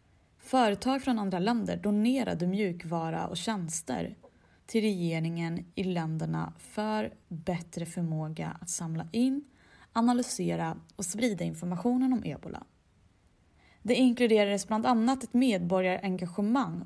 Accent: native